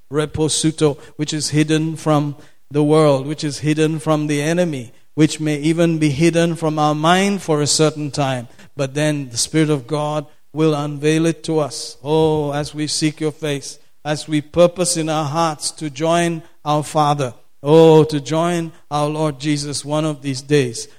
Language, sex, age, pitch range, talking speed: English, male, 50-69, 150-160 Hz, 175 wpm